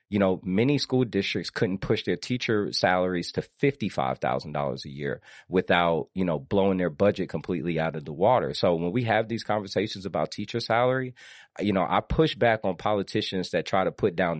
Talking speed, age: 190 wpm, 30-49